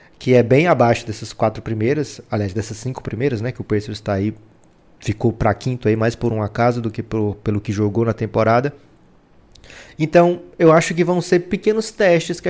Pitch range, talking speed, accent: 120-160 Hz, 195 wpm, Brazilian